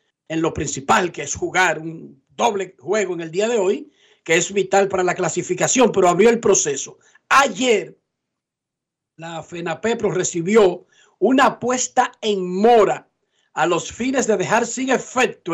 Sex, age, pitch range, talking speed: male, 50-69, 195-250 Hz, 150 wpm